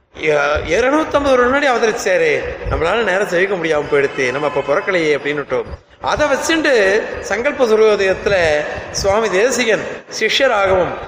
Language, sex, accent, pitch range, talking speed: Tamil, male, native, 195-285 Hz, 110 wpm